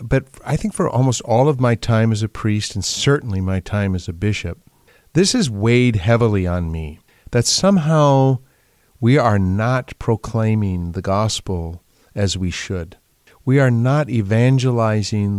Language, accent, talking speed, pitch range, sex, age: English, American, 155 wpm, 100-135 Hz, male, 50-69